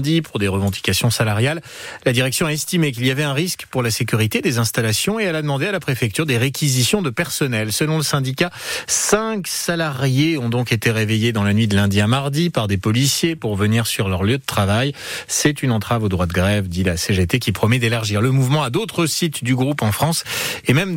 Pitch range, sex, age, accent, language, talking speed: 110-150 Hz, male, 30-49, French, French, 225 wpm